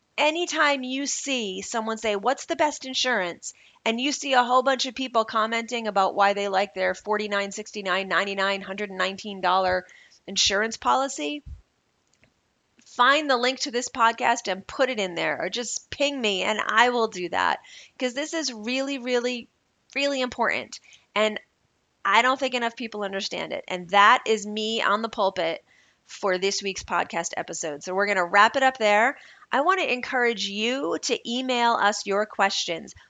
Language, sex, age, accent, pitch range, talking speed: English, female, 30-49, American, 190-245 Hz, 170 wpm